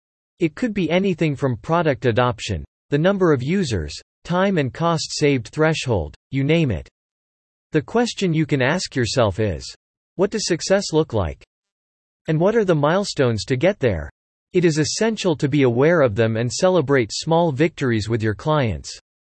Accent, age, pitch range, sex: American, 40-59, 120-170 Hz, male